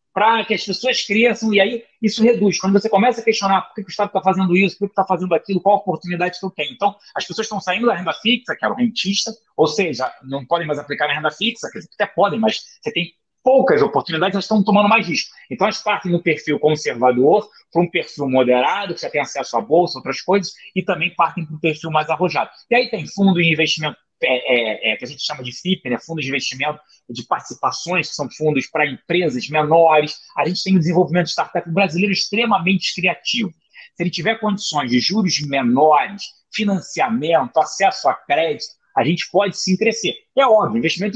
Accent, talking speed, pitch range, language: Brazilian, 215 wpm, 155-215 Hz, Portuguese